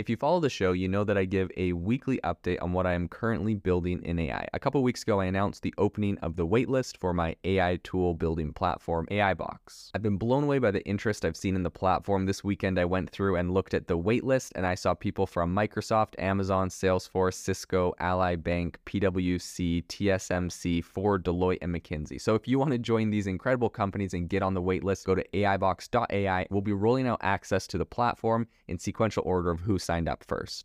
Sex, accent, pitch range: male, American, 90-110 Hz